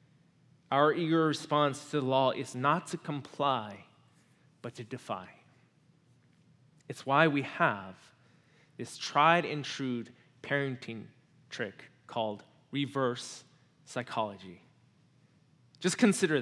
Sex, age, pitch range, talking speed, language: male, 20-39, 135-180 Hz, 100 wpm, English